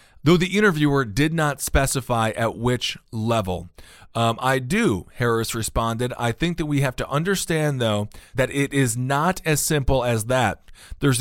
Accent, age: American, 40-59